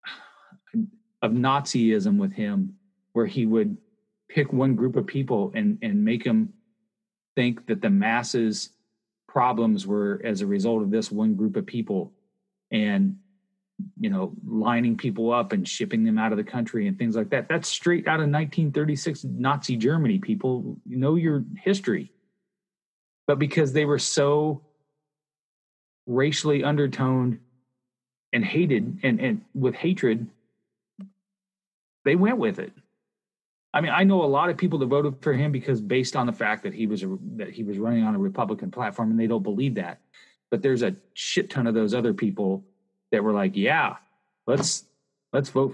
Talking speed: 165 wpm